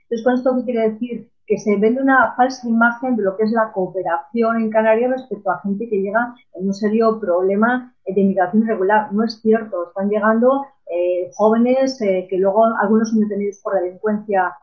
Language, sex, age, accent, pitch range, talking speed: Spanish, female, 30-49, Spanish, 195-240 Hz, 195 wpm